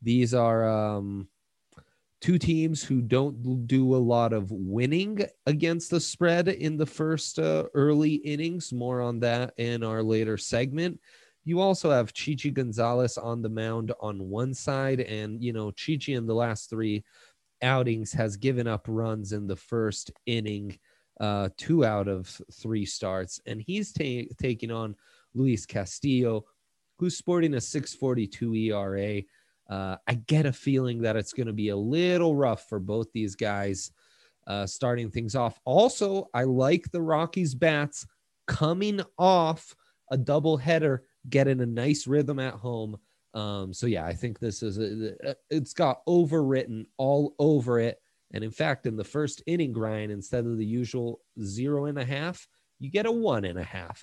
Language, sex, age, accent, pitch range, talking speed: English, male, 30-49, American, 110-150 Hz, 165 wpm